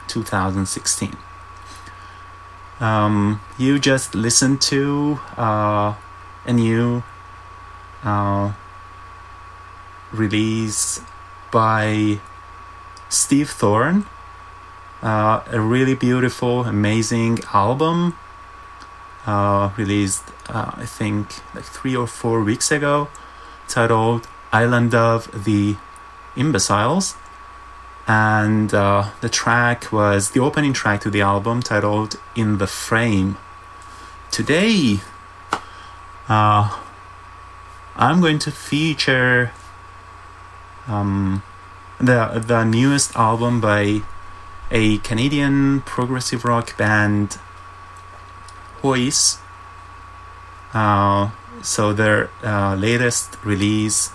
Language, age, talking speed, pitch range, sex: English, 30-49, 85 wpm, 95-115 Hz, male